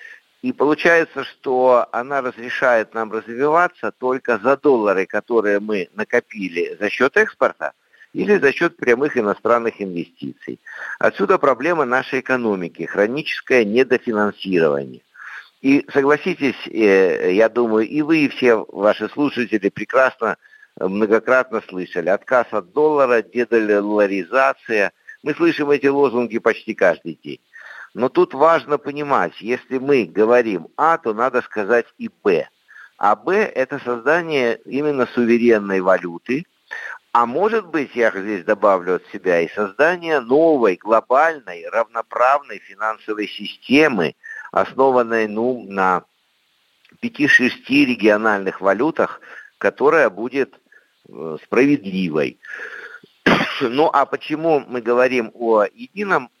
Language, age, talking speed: Russian, 60-79, 110 wpm